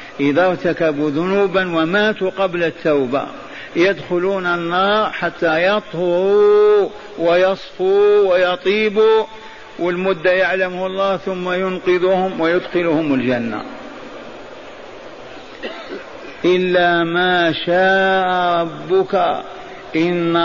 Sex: male